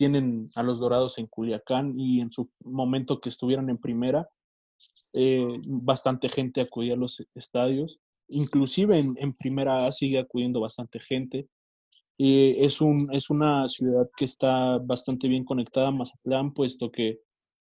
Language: Spanish